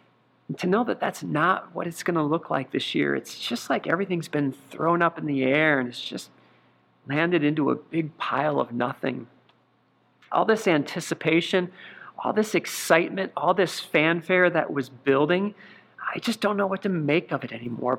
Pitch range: 140-180 Hz